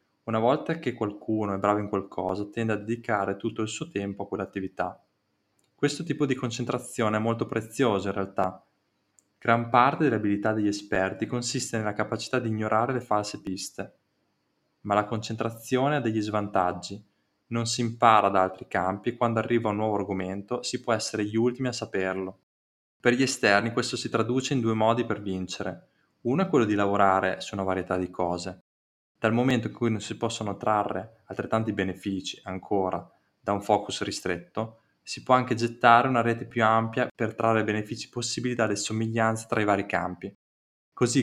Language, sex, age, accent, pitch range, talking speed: Italian, male, 20-39, native, 100-120 Hz, 175 wpm